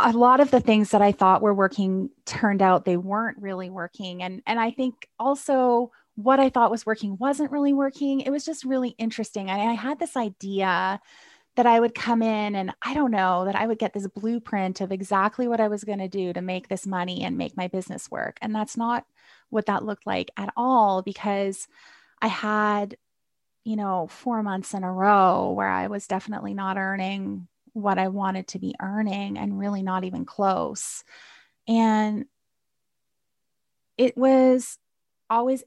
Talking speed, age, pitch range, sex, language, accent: 190 wpm, 20-39, 195-235 Hz, female, English, American